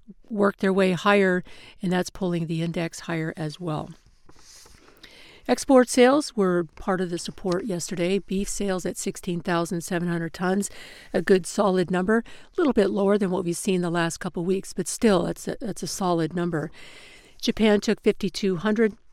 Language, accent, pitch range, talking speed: English, American, 175-205 Hz, 160 wpm